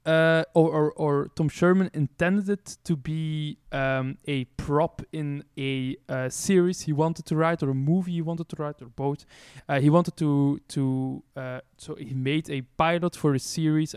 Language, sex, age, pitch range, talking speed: English, male, 20-39, 135-160 Hz, 175 wpm